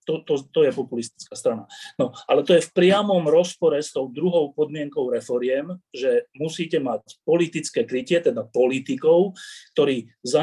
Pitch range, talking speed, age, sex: 130-205 Hz, 155 wpm, 30-49, male